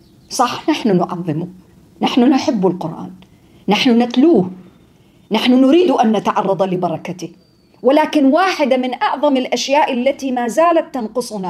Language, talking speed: English, 115 wpm